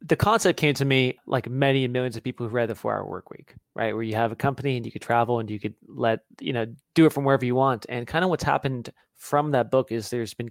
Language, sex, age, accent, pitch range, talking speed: English, male, 20-39, American, 110-130 Hz, 290 wpm